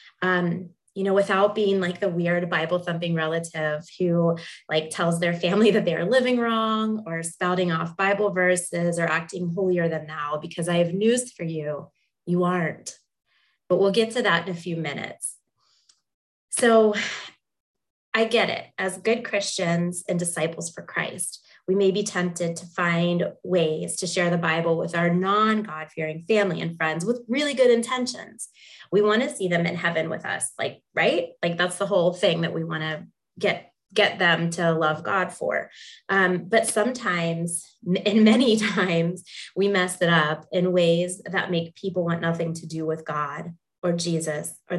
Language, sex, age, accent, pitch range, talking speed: English, female, 20-39, American, 165-195 Hz, 170 wpm